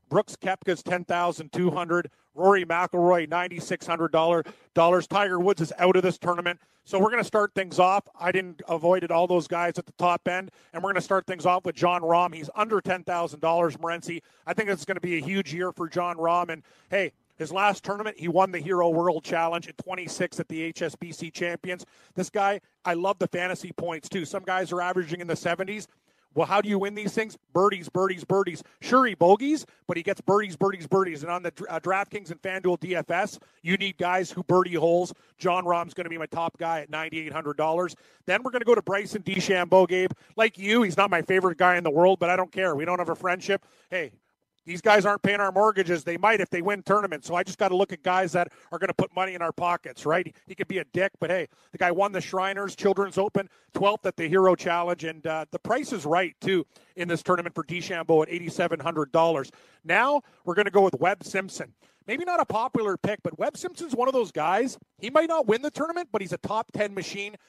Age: 40-59